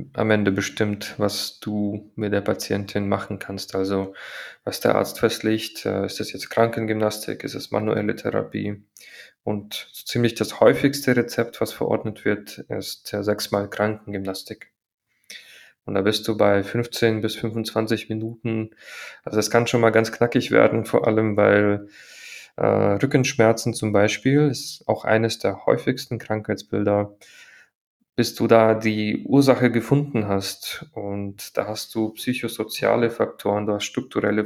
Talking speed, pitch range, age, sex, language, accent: 145 wpm, 105-115 Hz, 20-39, male, German, German